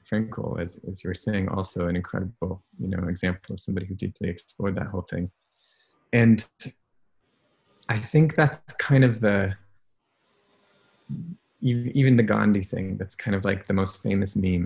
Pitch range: 95-120 Hz